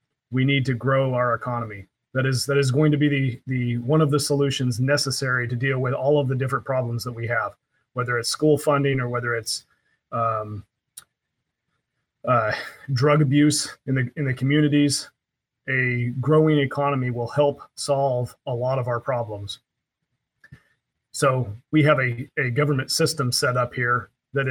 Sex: male